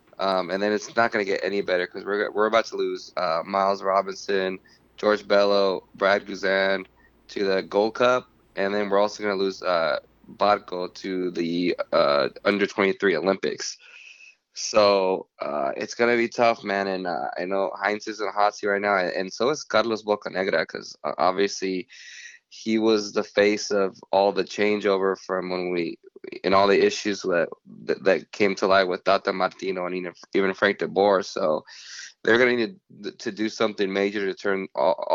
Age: 20-39